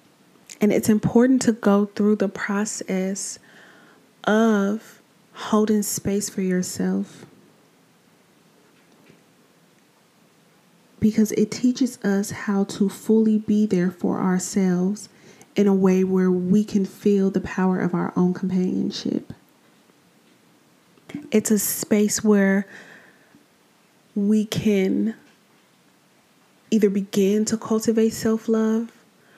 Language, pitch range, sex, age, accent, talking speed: English, 185-215 Hz, female, 20-39, American, 100 wpm